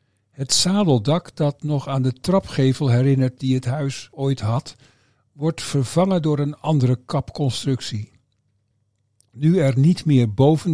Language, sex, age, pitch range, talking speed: Dutch, male, 50-69, 120-155 Hz, 135 wpm